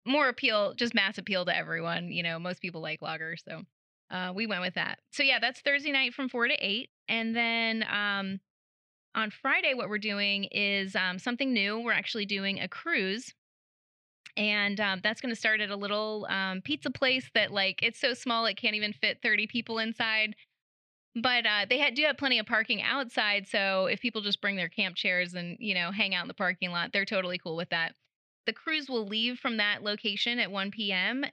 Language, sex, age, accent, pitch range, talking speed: English, female, 20-39, American, 185-230 Hz, 210 wpm